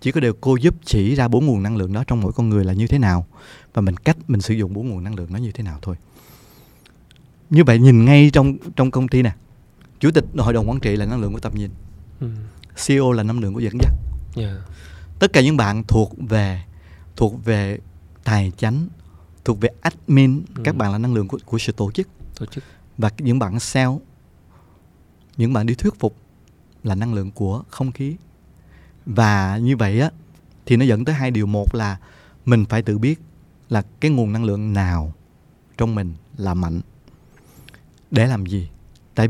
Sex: male